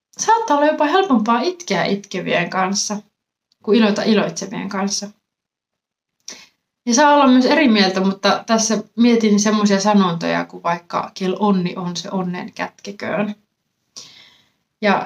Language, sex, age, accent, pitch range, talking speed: Finnish, female, 20-39, native, 195-240 Hz, 125 wpm